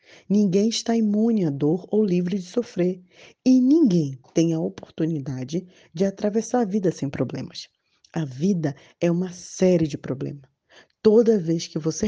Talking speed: 155 wpm